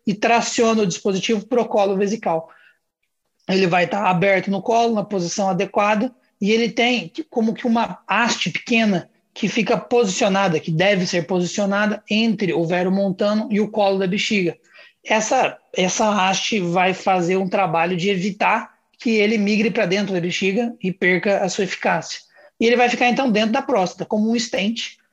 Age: 20-39